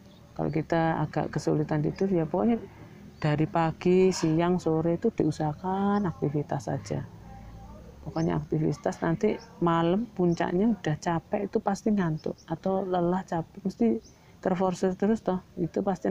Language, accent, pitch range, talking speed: Indonesian, native, 145-180 Hz, 125 wpm